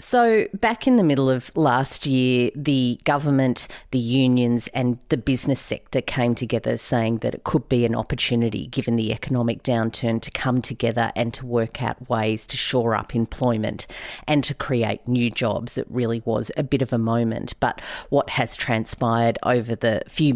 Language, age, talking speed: English, 40-59, 180 wpm